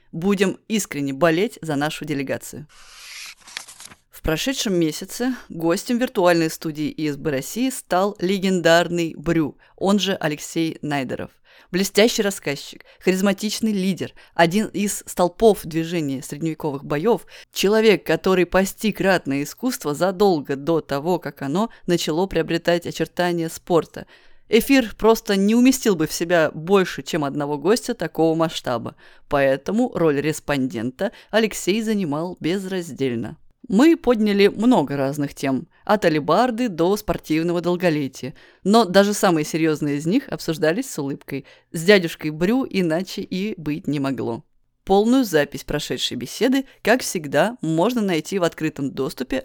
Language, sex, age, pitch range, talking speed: Russian, female, 20-39, 155-200 Hz, 125 wpm